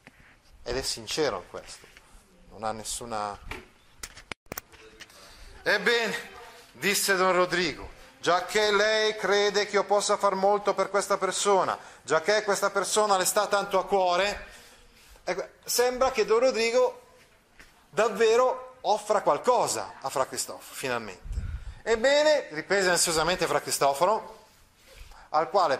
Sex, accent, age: male, native, 30-49